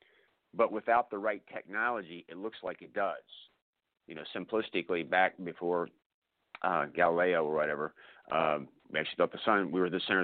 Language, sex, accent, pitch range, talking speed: English, male, American, 85-110 Hz, 170 wpm